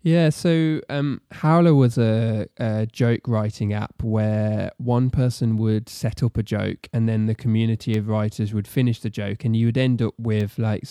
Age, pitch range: 20-39, 105-115 Hz